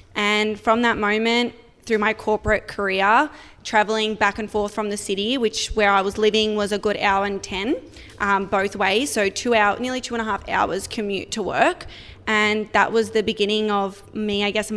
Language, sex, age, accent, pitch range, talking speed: English, female, 20-39, Australian, 205-225 Hz, 205 wpm